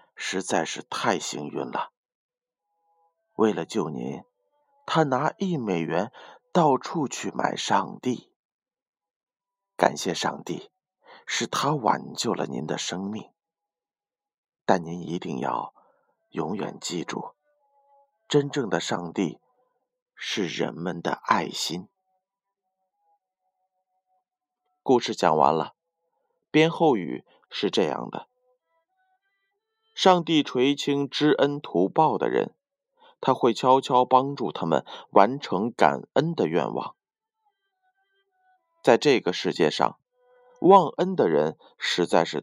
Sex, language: male, Chinese